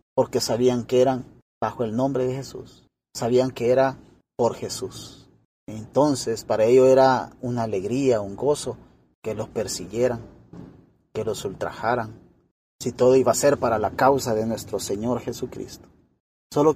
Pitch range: 125-165 Hz